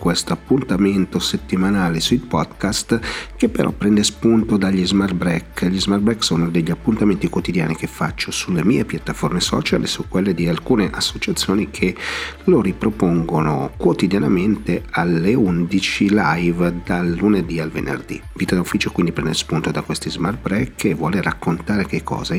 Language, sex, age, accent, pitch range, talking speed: Italian, male, 40-59, native, 80-105 Hz, 150 wpm